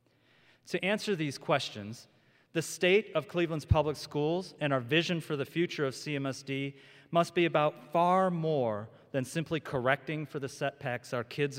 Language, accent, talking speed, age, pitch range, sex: English, American, 160 wpm, 40-59, 130-160 Hz, male